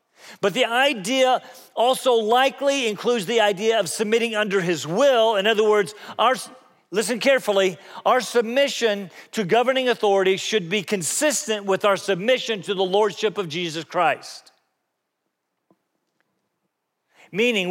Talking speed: 120 wpm